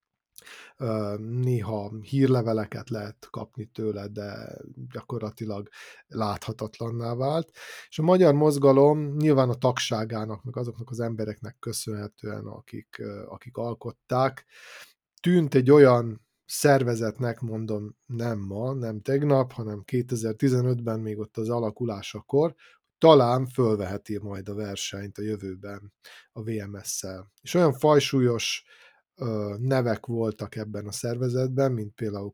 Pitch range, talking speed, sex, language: 105-130 Hz, 110 wpm, male, Hungarian